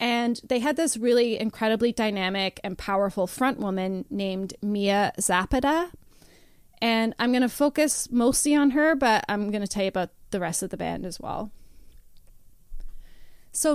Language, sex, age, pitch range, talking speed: English, female, 20-39, 195-245 Hz, 160 wpm